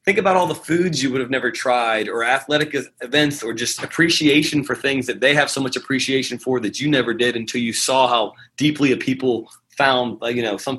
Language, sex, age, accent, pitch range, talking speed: English, male, 30-49, American, 125-150 Hz, 220 wpm